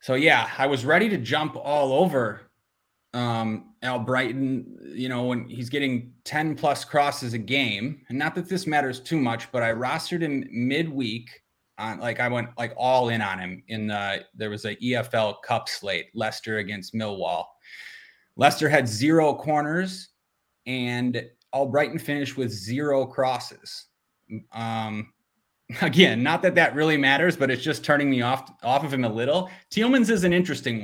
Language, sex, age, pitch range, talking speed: English, male, 30-49, 120-150 Hz, 165 wpm